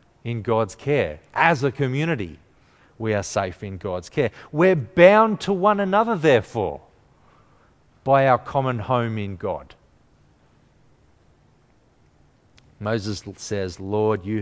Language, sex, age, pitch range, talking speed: English, male, 40-59, 105-155 Hz, 115 wpm